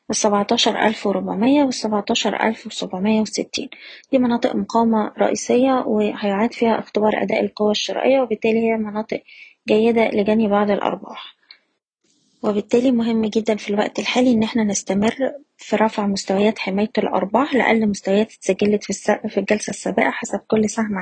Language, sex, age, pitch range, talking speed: Arabic, female, 20-39, 205-235 Hz, 135 wpm